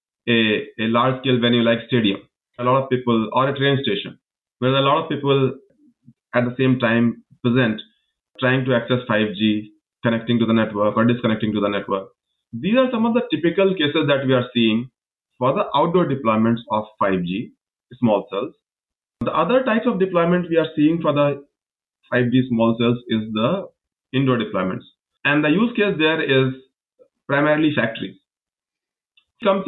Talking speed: 170 wpm